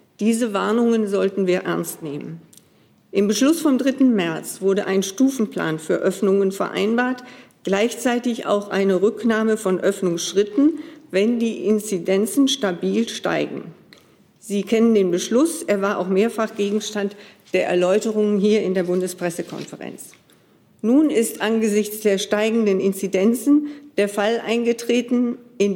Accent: German